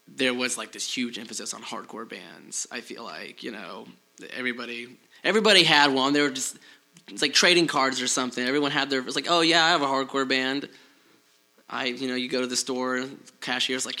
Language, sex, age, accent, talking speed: English, male, 20-39, American, 215 wpm